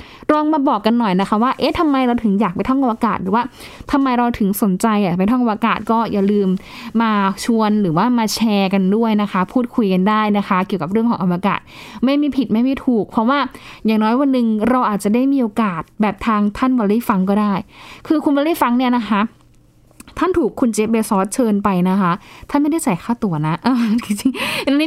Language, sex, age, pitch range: Thai, female, 20-39, 205-260 Hz